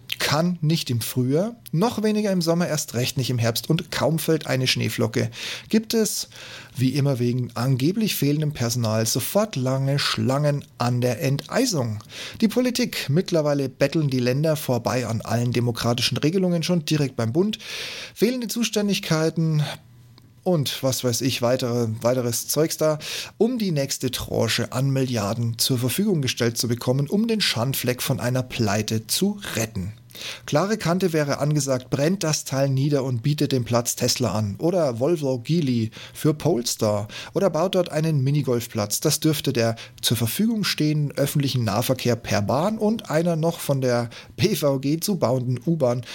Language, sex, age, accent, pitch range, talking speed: German, male, 30-49, German, 120-160 Hz, 155 wpm